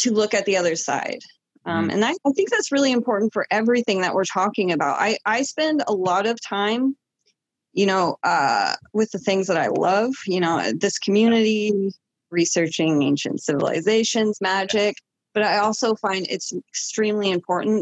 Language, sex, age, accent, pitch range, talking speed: English, female, 20-39, American, 175-225 Hz, 170 wpm